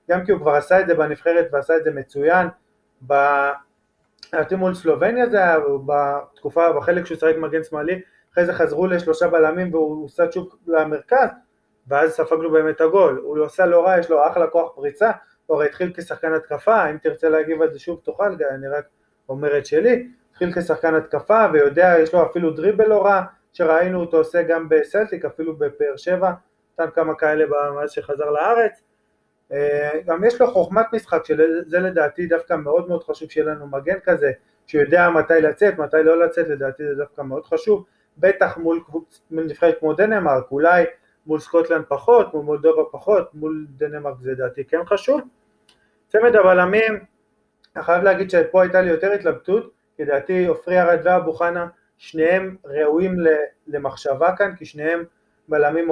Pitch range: 155-185 Hz